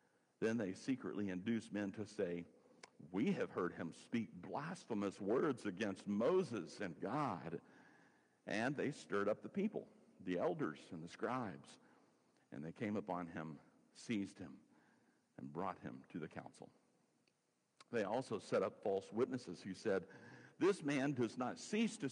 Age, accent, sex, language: 50-69, American, male, English